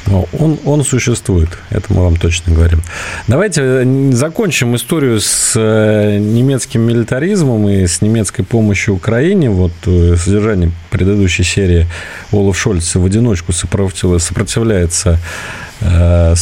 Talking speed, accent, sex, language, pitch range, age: 110 wpm, native, male, Russian, 95-130 Hz, 40-59